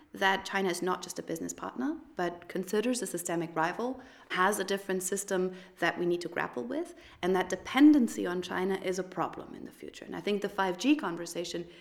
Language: English